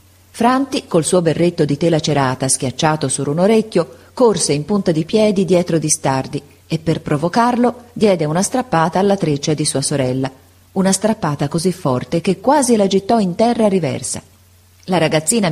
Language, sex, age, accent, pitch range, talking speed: Italian, female, 40-59, native, 140-200 Hz, 165 wpm